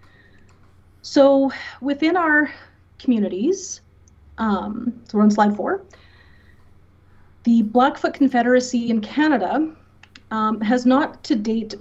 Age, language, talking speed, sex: 30-49, English, 100 wpm, female